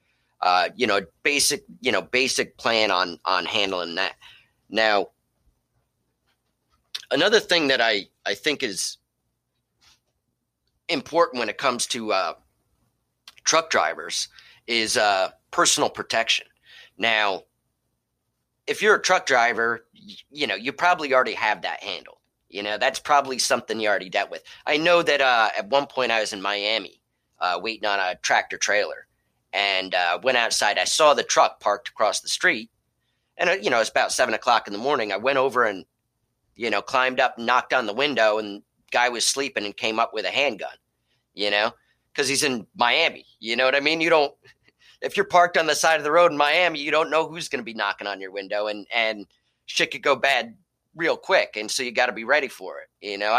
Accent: American